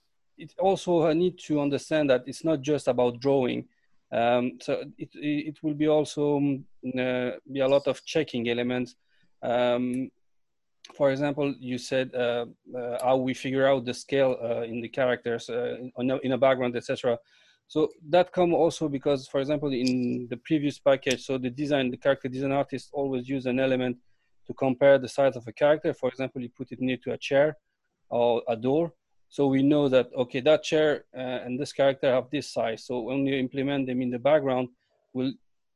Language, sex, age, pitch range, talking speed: English, male, 30-49, 125-145 Hz, 190 wpm